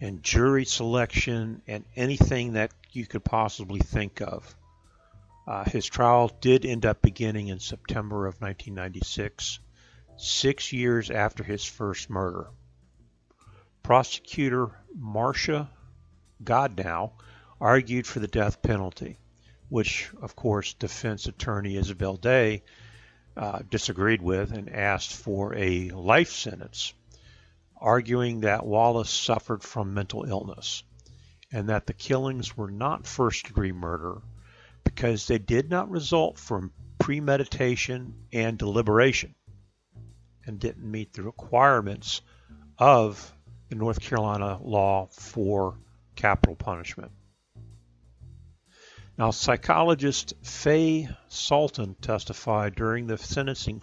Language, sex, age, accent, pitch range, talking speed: English, male, 50-69, American, 100-120 Hz, 110 wpm